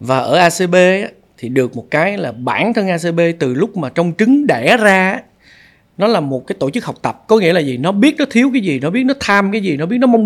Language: Vietnamese